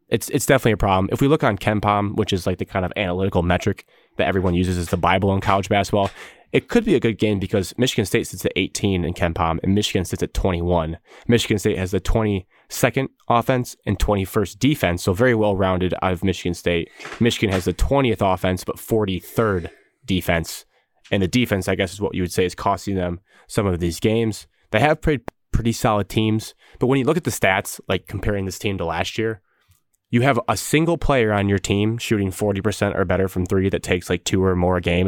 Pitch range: 95-110 Hz